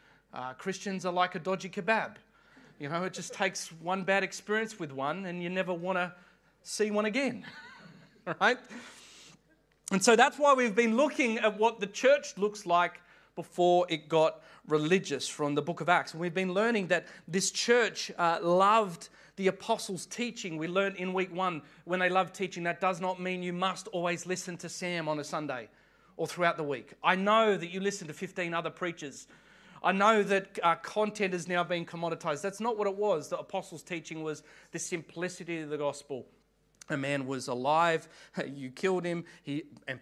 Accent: Australian